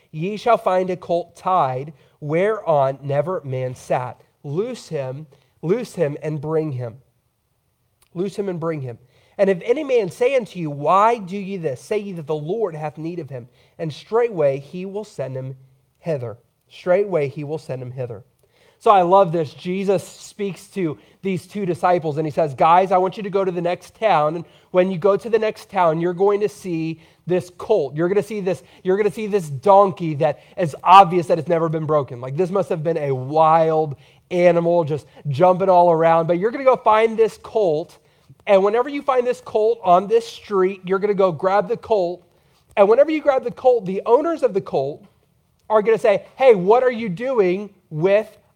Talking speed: 210 wpm